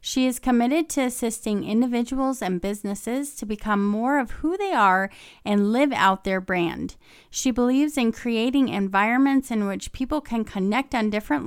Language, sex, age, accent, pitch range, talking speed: English, female, 30-49, American, 195-260 Hz, 165 wpm